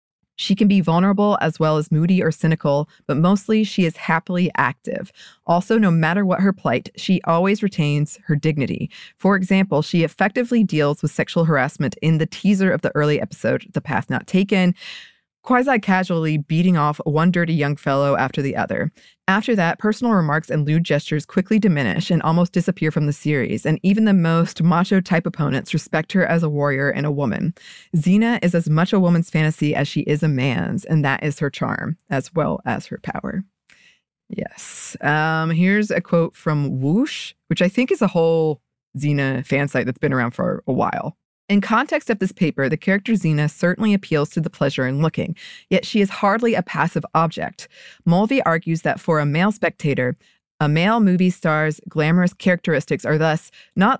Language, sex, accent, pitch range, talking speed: English, female, American, 150-190 Hz, 185 wpm